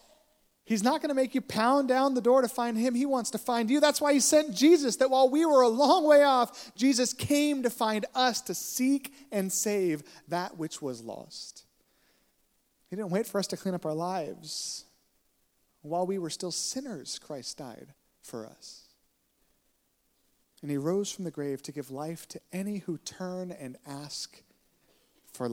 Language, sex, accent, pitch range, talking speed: English, male, American, 155-250 Hz, 185 wpm